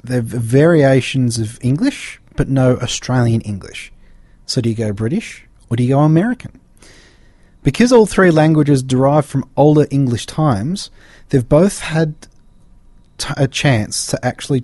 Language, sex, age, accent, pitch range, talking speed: English, male, 30-49, Australian, 110-140 Hz, 145 wpm